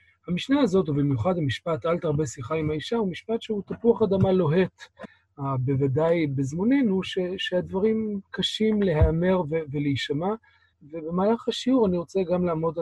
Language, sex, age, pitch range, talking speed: Hebrew, male, 40-59, 150-200 Hz, 135 wpm